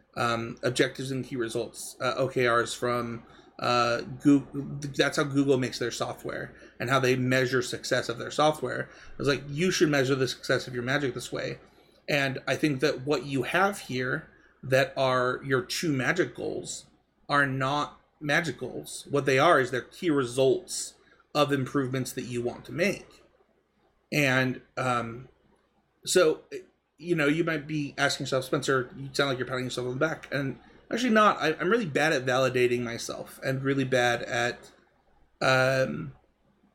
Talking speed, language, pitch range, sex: 170 wpm, English, 125-145 Hz, male